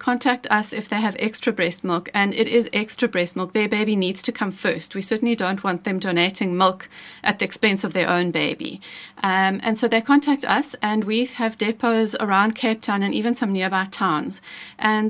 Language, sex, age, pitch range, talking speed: English, female, 30-49, 195-235 Hz, 210 wpm